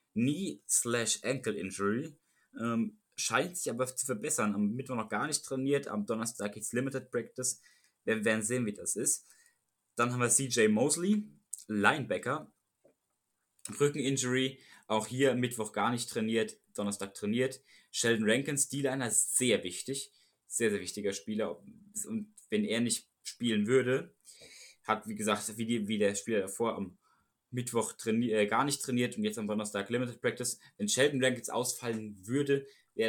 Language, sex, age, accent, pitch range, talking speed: German, male, 20-39, German, 105-130 Hz, 150 wpm